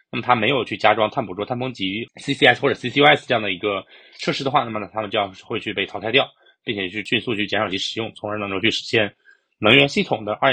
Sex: male